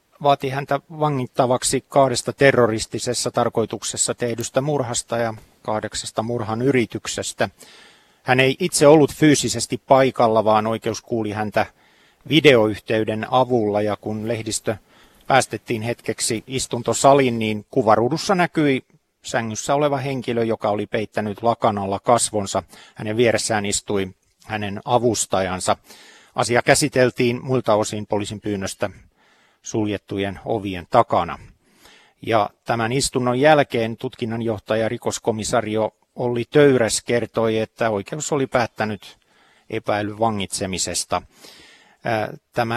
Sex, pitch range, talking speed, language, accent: male, 110-130 Hz, 100 wpm, Finnish, native